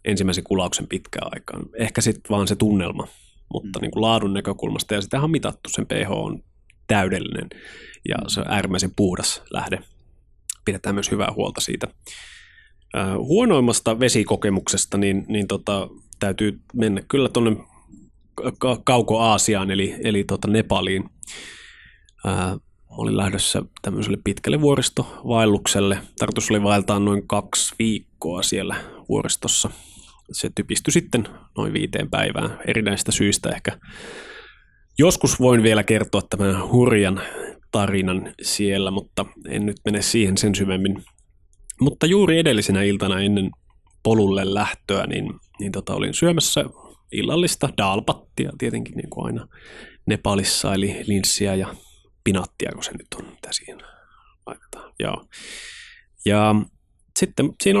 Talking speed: 120 wpm